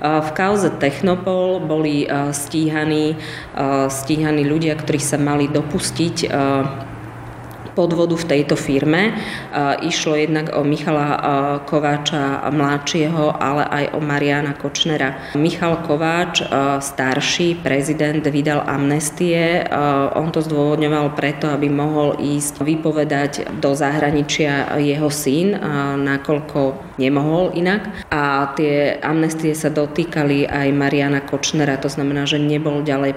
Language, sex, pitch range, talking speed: Slovak, female, 140-155 Hz, 110 wpm